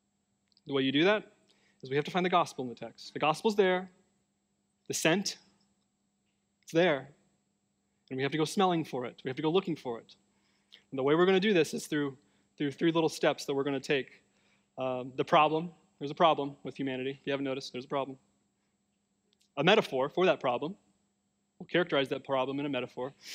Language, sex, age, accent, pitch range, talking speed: English, male, 20-39, American, 140-185 Hz, 210 wpm